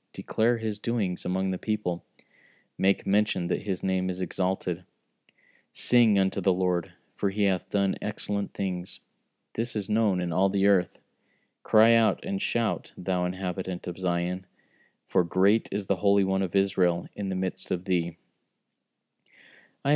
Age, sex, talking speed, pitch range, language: 30-49, male, 155 wpm, 90-105 Hz, English